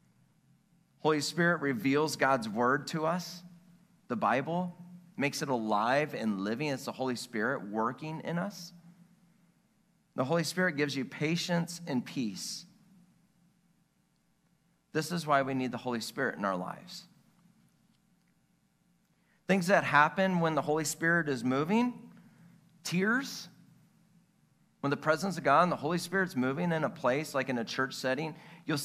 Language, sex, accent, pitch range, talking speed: English, male, American, 135-190 Hz, 145 wpm